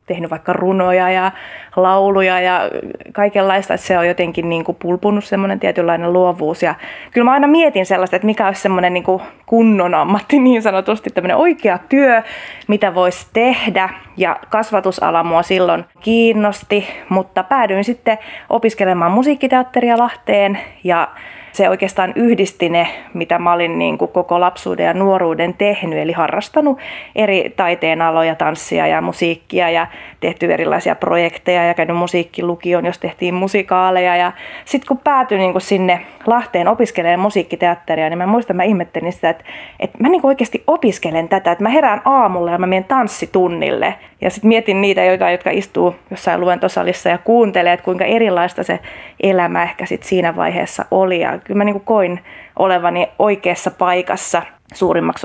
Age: 20-39